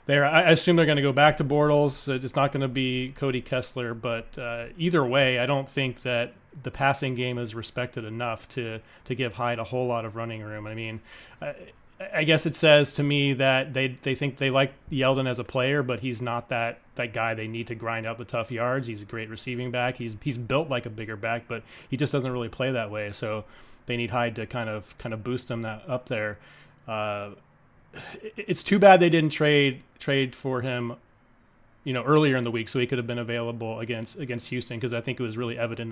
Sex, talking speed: male, 235 wpm